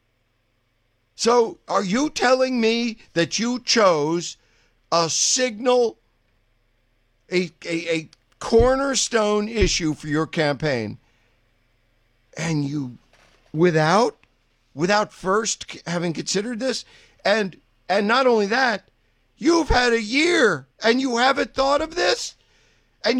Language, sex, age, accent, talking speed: English, male, 50-69, American, 110 wpm